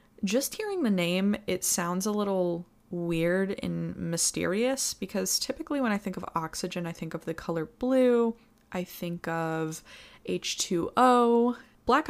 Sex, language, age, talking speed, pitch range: female, English, 20-39, 145 wpm, 175-225 Hz